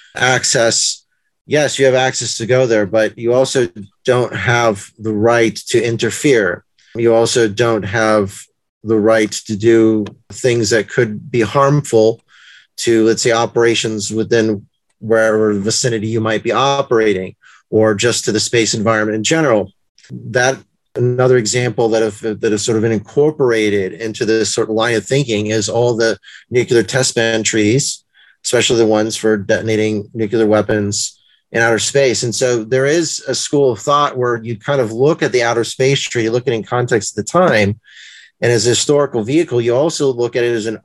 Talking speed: 180 wpm